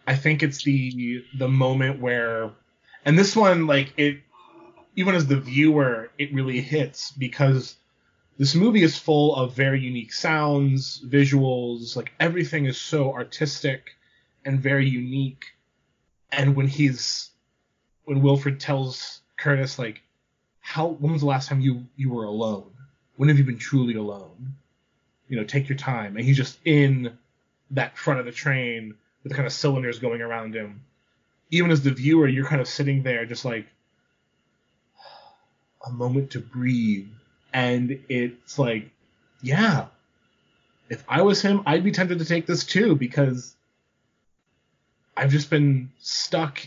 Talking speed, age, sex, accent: 155 wpm, 20-39, male, American